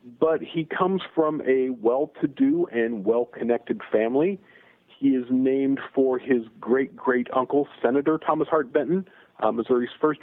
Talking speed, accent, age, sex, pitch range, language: 130 wpm, American, 40-59, male, 125-180 Hz, English